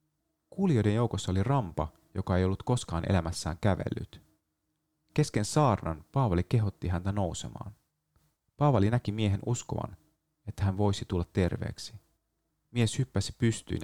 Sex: male